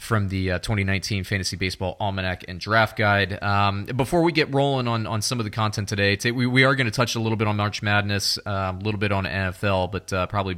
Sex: male